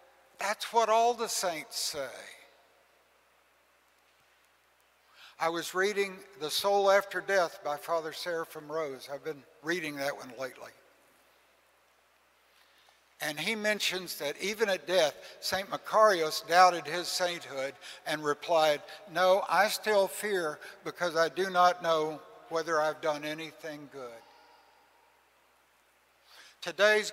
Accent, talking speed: American, 115 wpm